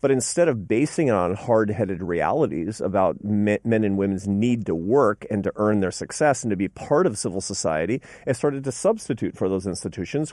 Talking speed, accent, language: 200 wpm, American, English